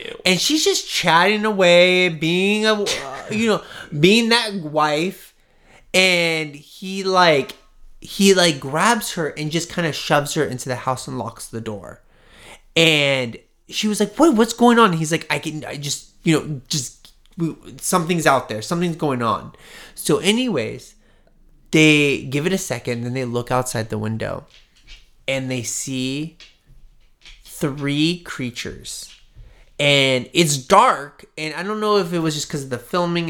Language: English